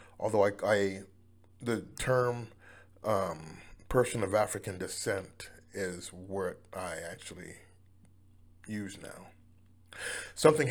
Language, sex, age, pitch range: English, male, 30-49, 90-110 Hz